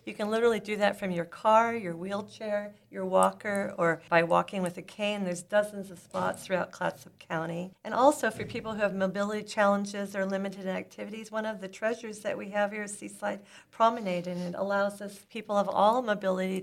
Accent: American